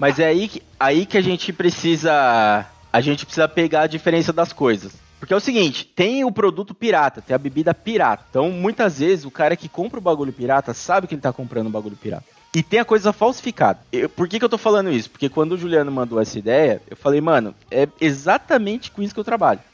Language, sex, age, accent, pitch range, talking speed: Portuguese, male, 20-39, Brazilian, 135-195 Hz, 235 wpm